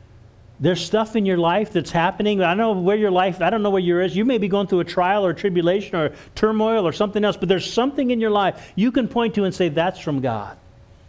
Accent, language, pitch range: American, English, 115-170 Hz